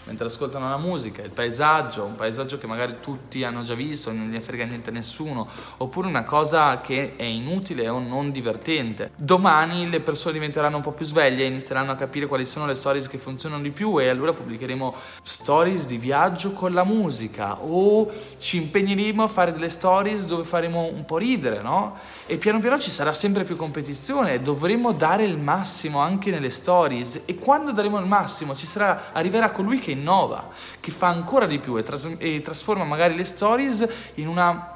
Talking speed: 190 wpm